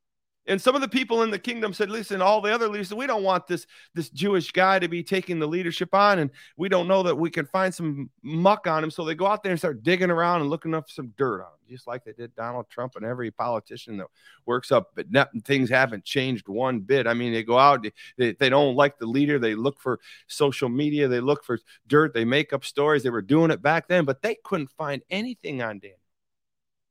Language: English